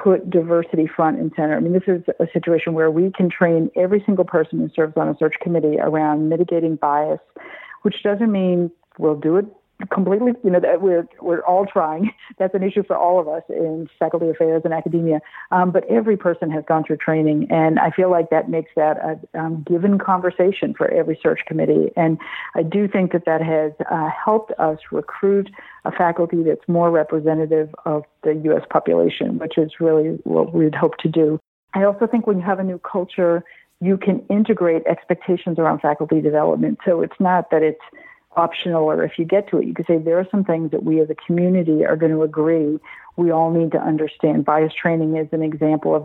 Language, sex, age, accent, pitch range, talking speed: English, female, 50-69, American, 155-185 Hz, 205 wpm